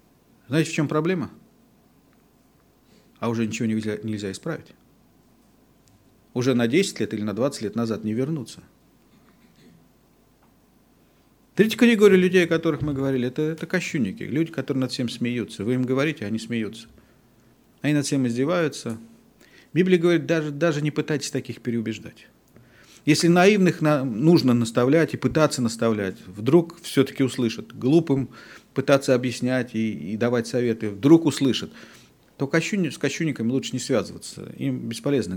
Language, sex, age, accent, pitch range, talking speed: Russian, male, 40-59, native, 115-155 Hz, 140 wpm